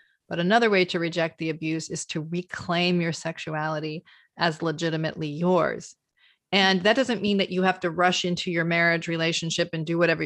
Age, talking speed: 40-59, 180 wpm